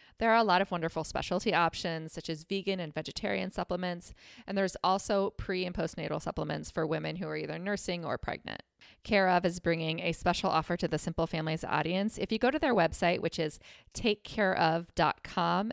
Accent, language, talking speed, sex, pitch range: American, English, 185 wpm, female, 165-210 Hz